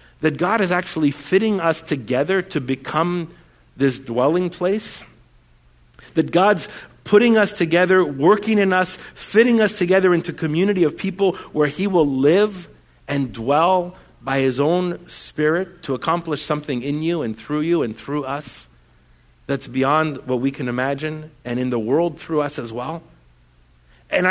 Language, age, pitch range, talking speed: English, 50-69, 135-205 Hz, 160 wpm